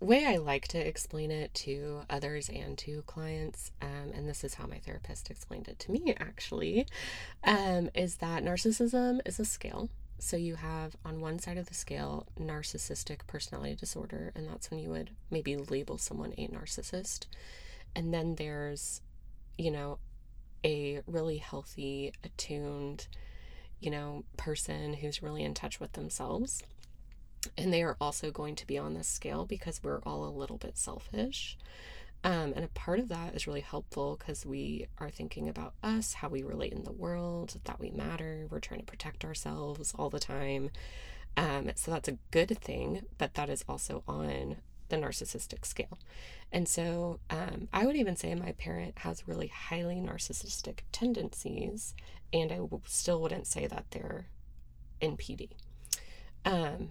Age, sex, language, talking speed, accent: 20-39, female, English, 165 wpm, American